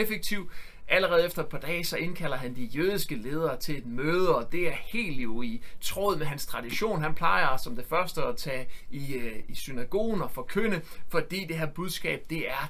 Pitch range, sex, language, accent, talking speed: 145-175 Hz, male, Danish, native, 205 wpm